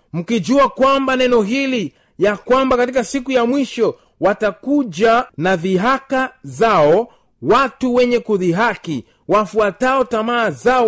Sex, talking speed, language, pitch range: male, 110 wpm, Swahili, 175-230 Hz